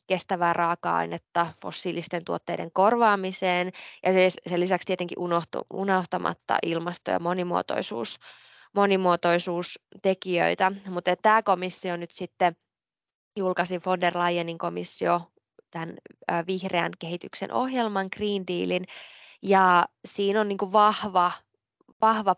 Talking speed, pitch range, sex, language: 100 wpm, 175-200 Hz, female, Finnish